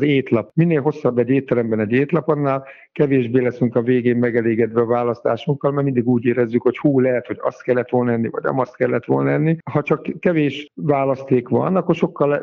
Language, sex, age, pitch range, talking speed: Hungarian, male, 50-69, 120-155 Hz, 200 wpm